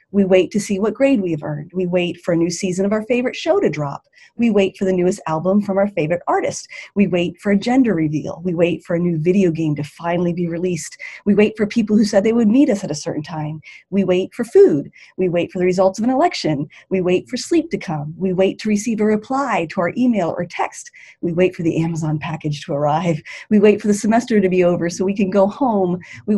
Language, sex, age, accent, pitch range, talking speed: English, female, 30-49, American, 175-230 Hz, 255 wpm